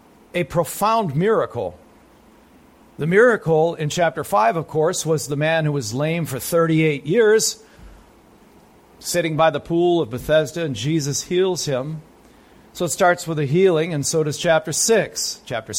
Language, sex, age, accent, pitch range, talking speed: English, male, 50-69, American, 140-185 Hz, 155 wpm